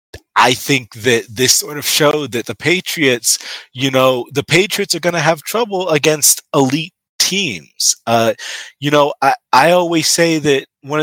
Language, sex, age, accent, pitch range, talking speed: English, male, 30-49, American, 105-145 Hz, 170 wpm